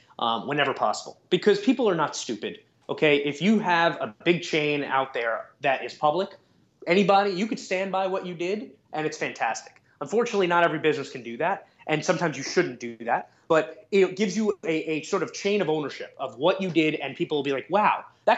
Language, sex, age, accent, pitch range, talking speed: English, male, 20-39, American, 145-195 Hz, 215 wpm